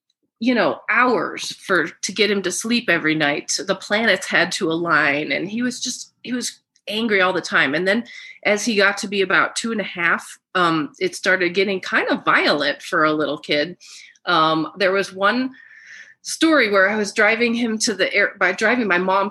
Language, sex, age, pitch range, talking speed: English, female, 30-49, 185-260 Hz, 205 wpm